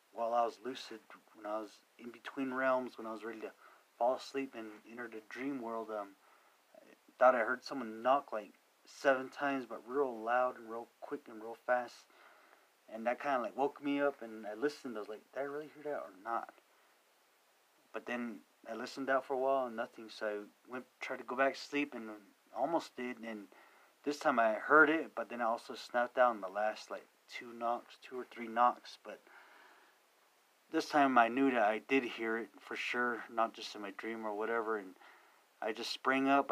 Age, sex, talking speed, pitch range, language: 30-49, male, 215 wpm, 110-130 Hz, English